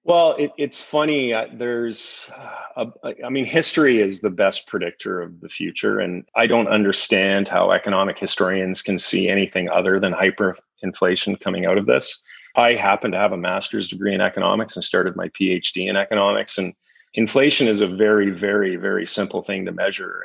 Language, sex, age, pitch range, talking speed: English, male, 30-49, 100-115 Hz, 180 wpm